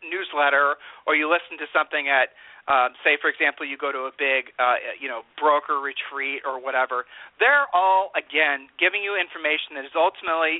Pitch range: 155-185 Hz